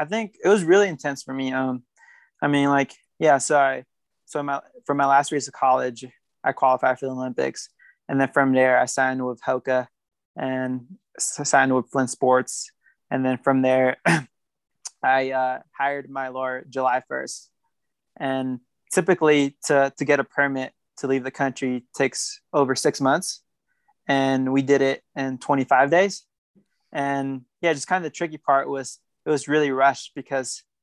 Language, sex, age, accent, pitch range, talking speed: English, male, 20-39, American, 130-145 Hz, 170 wpm